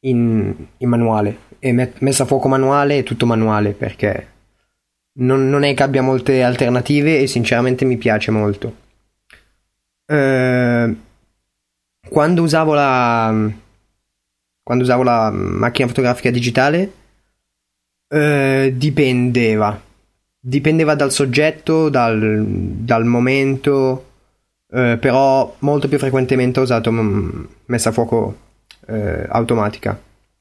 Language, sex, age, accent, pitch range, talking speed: Italian, male, 20-39, native, 110-135 Hz, 110 wpm